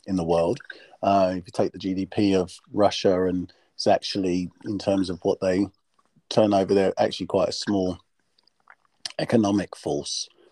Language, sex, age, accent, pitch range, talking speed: English, male, 40-59, British, 95-110 Hz, 160 wpm